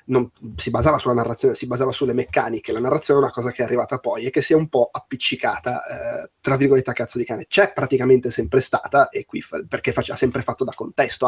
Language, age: Italian, 20-39